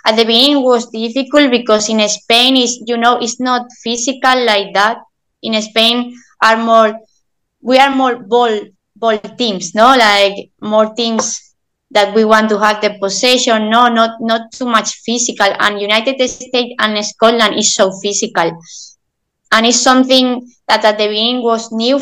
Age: 20-39